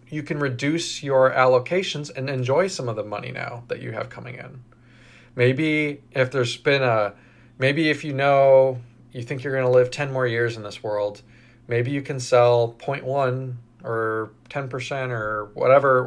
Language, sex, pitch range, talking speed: English, male, 120-140 Hz, 175 wpm